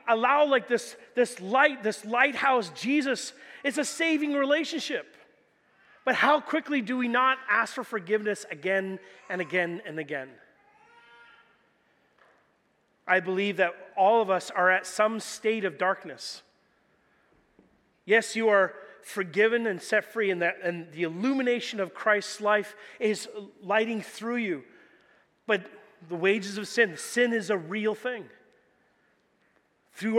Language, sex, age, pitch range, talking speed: English, male, 30-49, 190-245 Hz, 135 wpm